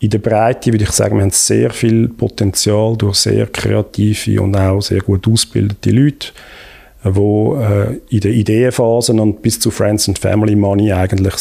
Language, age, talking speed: German, 40-59, 170 wpm